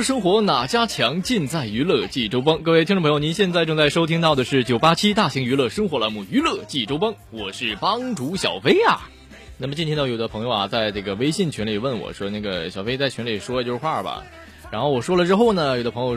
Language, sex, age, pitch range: Chinese, male, 20-39, 110-155 Hz